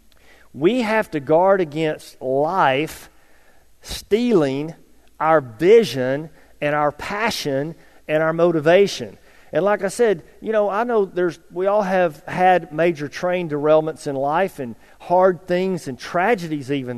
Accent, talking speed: American, 140 wpm